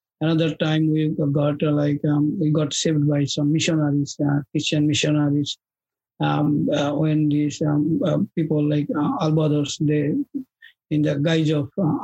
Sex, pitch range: male, 150-160 Hz